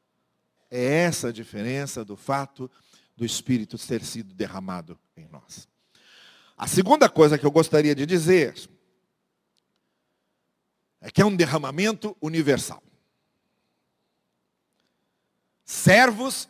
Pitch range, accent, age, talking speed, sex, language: 125-195 Hz, Brazilian, 50-69, 100 wpm, male, Portuguese